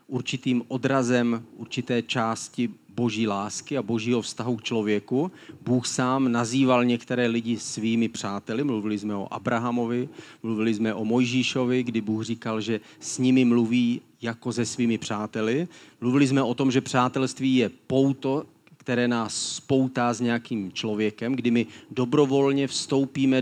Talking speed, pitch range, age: 140 wpm, 115-135 Hz, 40-59